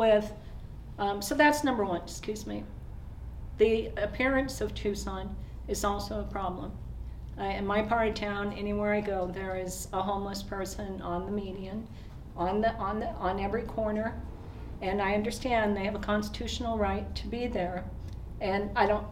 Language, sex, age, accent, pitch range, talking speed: English, female, 50-69, American, 185-215 Hz, 170 wpm